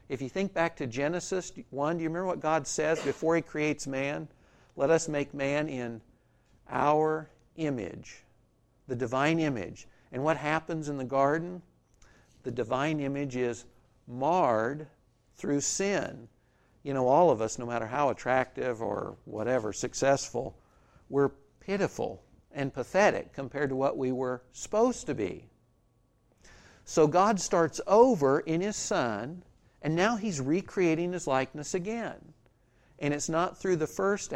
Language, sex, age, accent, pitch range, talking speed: English, male, 60-79, American, 130-175 Hz, 145 wpm